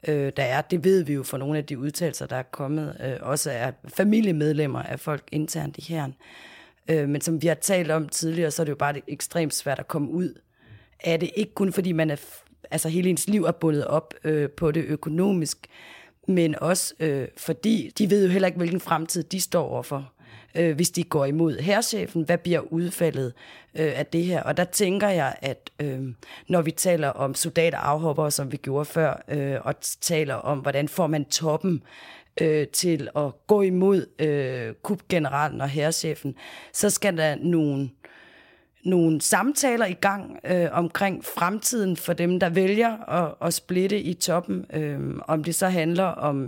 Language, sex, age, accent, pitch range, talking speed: Danish, female, 30-49, native, 145-180 Hz, 175 wpm